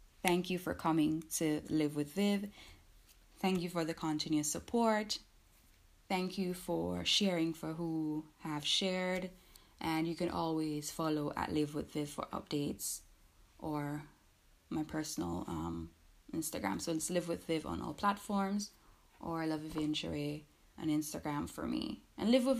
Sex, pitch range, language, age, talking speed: female, 150-195 Hz, English, 10-29, 150 wpm